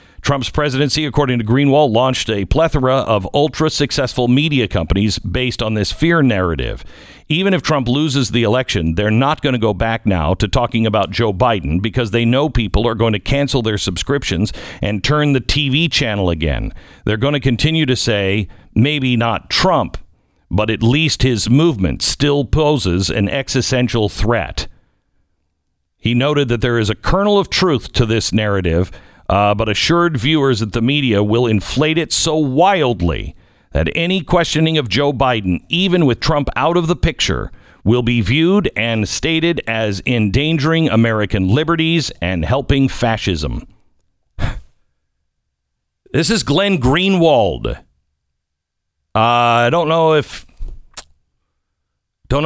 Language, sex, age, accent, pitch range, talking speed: English, male, 50-69, American, 100-145 Hz, 150 wpm